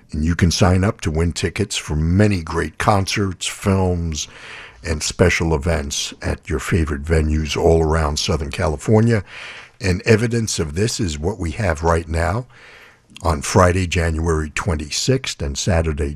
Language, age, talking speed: English, 60-79, 150 wpm